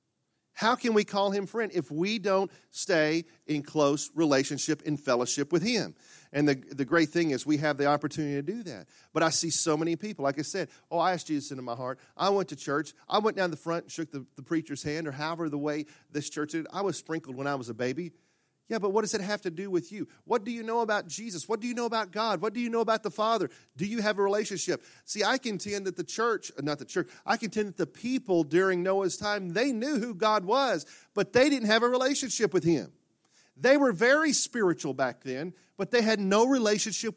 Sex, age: male, 40-59